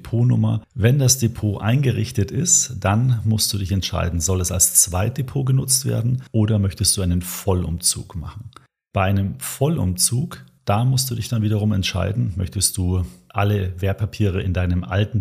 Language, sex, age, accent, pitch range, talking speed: German, male, 40-59, German, 90-115 Hz, 155 wpm